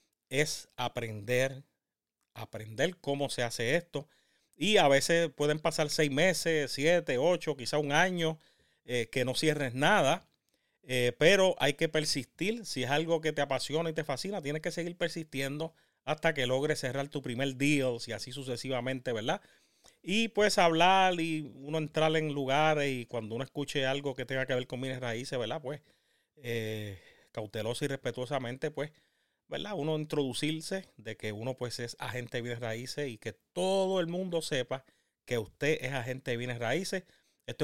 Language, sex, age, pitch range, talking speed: Spanish, male, 30-49, 125-160 Hz, 170 wpm